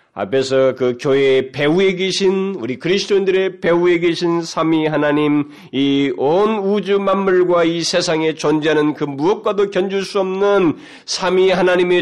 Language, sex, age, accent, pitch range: Korean, male, 30-49, native, 130-205 Hz